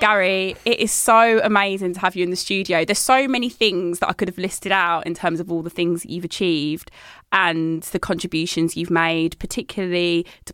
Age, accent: 20-39, British